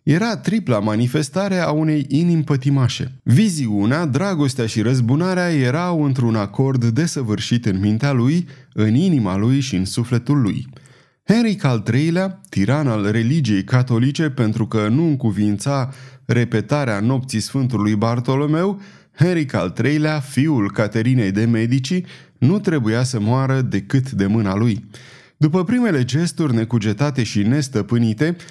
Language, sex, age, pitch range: Romanian, male, 30-49, 115-150 Hz